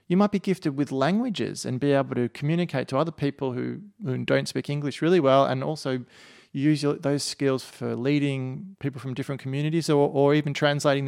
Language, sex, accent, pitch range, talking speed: English, male, Australian, 125-165 Hz, 195 wpm